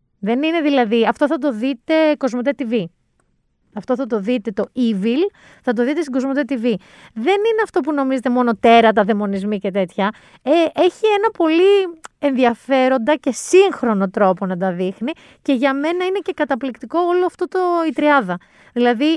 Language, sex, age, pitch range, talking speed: Greek, female, 30-49, 220-310 Hz, 170 wpm